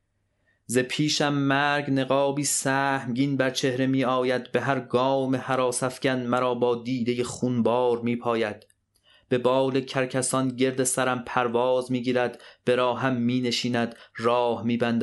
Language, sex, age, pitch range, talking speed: Persian, male, 30-49, 115-130 Hz, 125 wpm